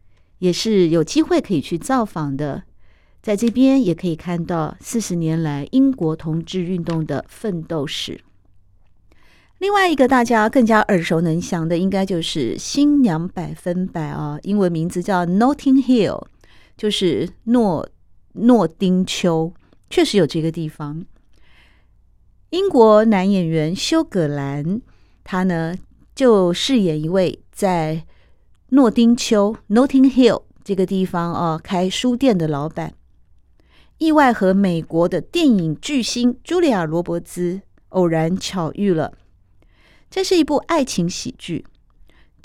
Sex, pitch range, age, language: female, 160-235 Hz, 50-69, Chinese